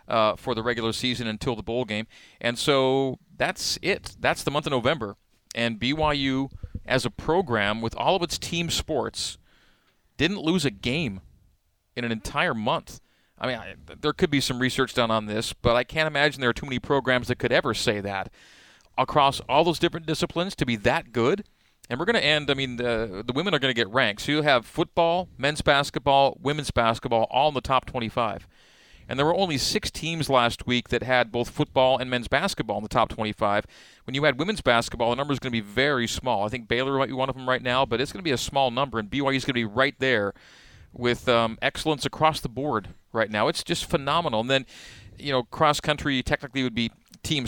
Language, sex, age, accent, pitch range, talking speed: English, male, 40-59, American, 115-140 Hz, 225 wpm